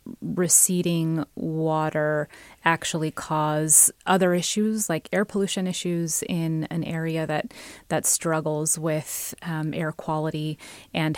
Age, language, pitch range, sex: 30-49, English, 155-185 Hz, female